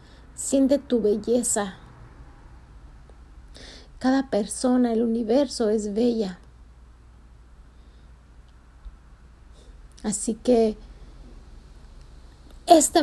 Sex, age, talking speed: female, 30-49, 55 wpm